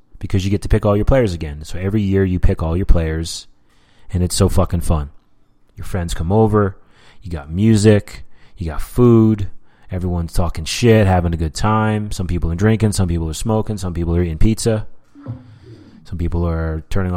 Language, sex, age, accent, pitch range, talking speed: English, male, 30-49, American, 85-110 Hz, 195 wpm